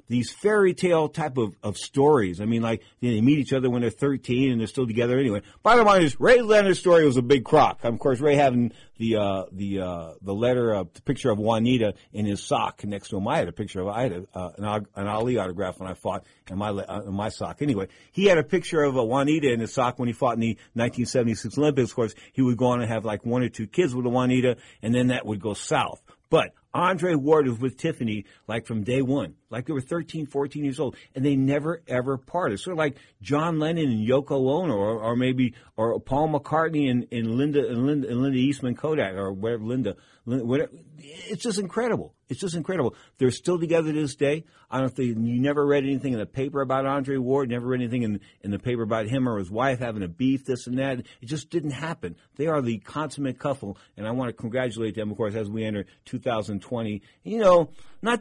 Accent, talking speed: American, 235 wpm